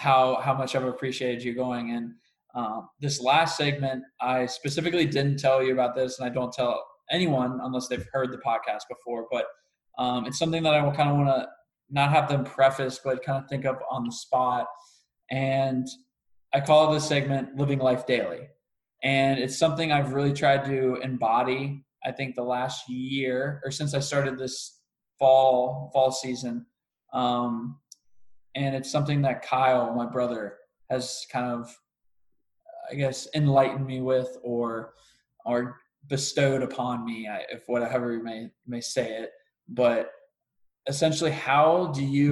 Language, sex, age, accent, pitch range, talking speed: English, male, 20-39, American, 125-140 Hz, 165 wpm